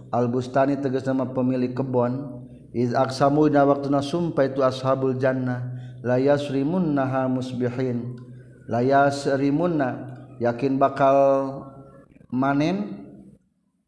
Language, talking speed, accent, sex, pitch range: Indonesian, 90 wpm, native, male, 125-140 Hz